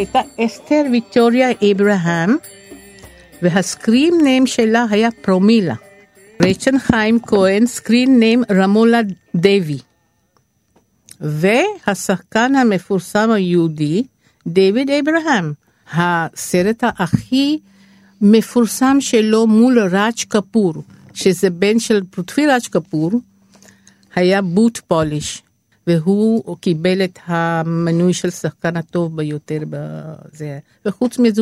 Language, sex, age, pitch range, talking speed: Hebrew, female, 60-79, 175-225 Hz, 90 wpm